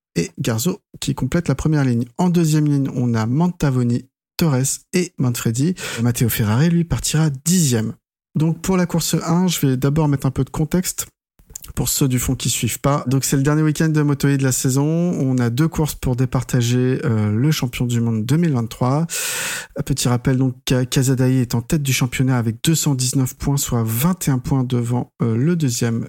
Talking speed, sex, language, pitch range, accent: 195 wpm, male, French, 120-150 Hz, French